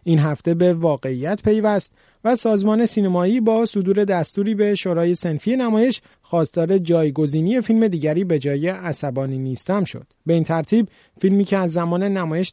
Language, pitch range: Persian, 155-200 Hz